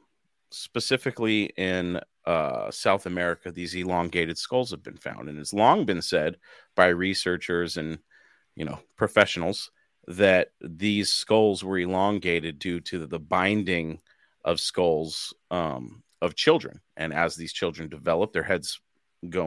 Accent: American